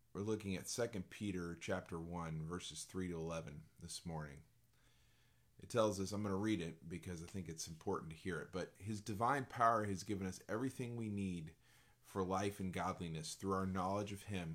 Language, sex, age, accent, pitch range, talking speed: English, male, 30-49, American, 85-110 Hz, 200 wpm